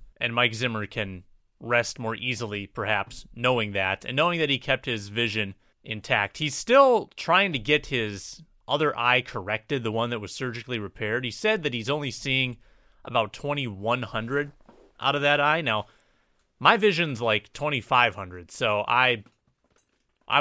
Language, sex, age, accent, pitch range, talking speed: English, male, 30-49, American, 110-145 Hz, 155 wpm